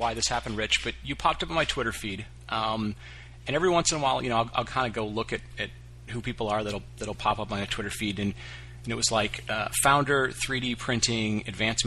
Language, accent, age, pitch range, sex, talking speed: English, American, 30-49, 100-120 Hz, male, 255 wpm